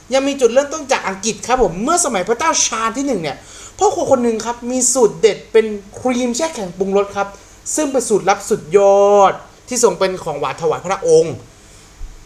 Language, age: Thai, 30-49